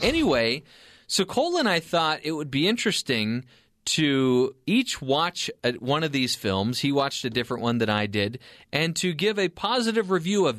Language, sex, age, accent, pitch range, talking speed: English, male, 30-49, American, 120-170 Hz, 180 wpm